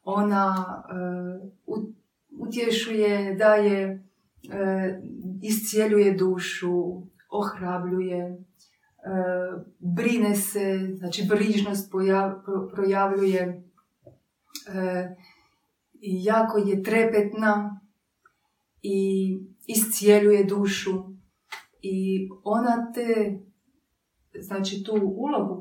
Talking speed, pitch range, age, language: 65 wpm, 185-210 Hz, 30-49, Croatian